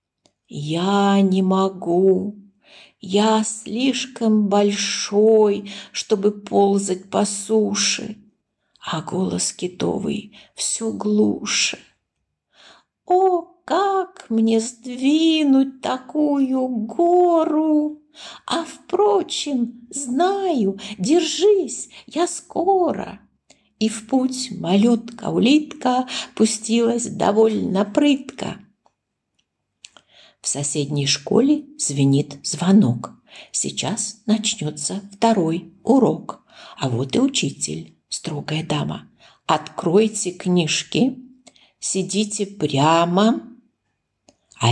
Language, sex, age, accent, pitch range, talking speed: Ukrainian, female, 50-69, native, 195-285 Hz, 70 wpm